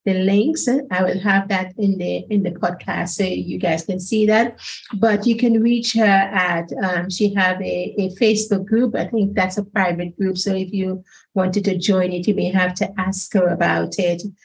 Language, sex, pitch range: English, female, 180-215 Hz